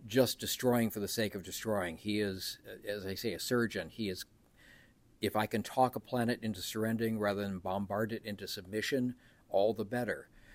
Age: 60-79